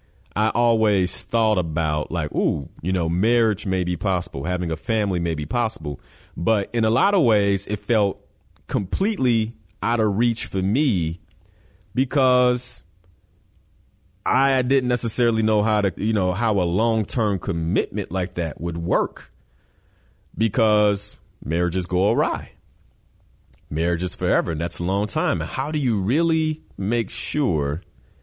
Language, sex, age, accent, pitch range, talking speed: English, male, 30-49, American, 85-120 Hz, 145 wpm